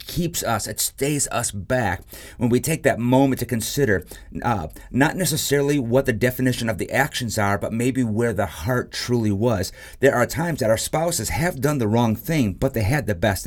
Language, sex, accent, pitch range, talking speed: English, male, American, 100-130 Hz, 205 wpm